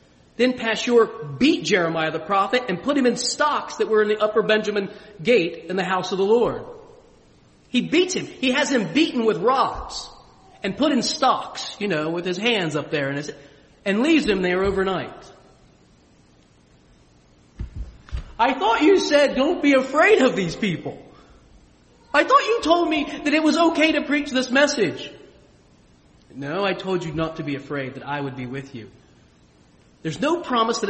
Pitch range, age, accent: 155-215 Hz, 40-59, American